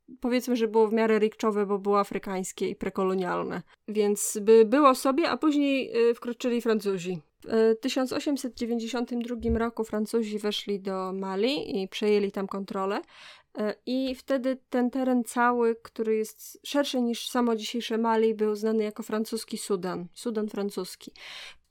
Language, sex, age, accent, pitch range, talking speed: Polish, female, 20-39, native, 215-250 Hz, 140 wpm